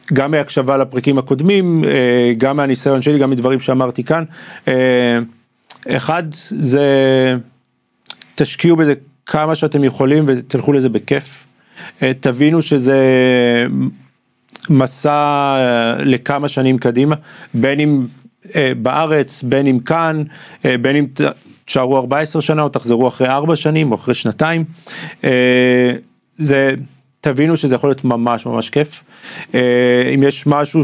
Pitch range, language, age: 125-150 Hz, Hebrew, 40-59